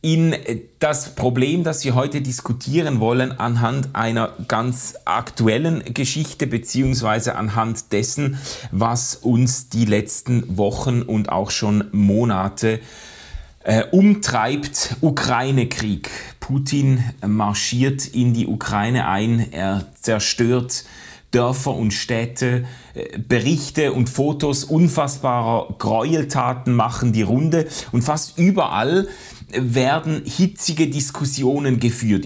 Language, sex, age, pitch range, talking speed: German, male, 30-49, 115-145 Hz, 100 wpm